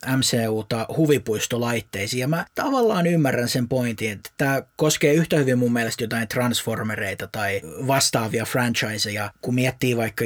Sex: male